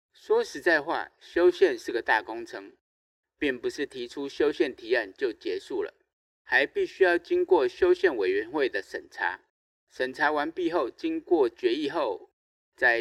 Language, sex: Chinese, male